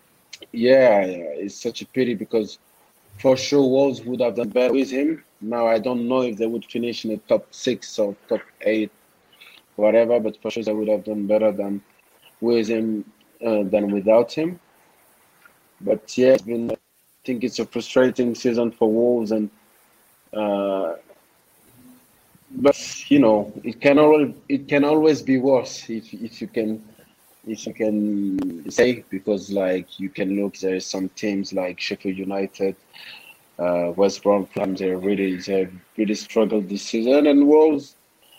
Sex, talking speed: male, 160 wpm